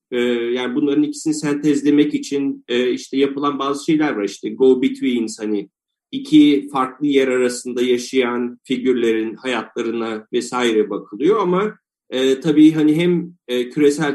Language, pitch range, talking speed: Turkish, 125-155 Hz, 120 wpm